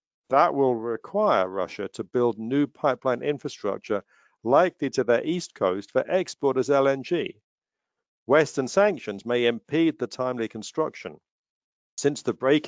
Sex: male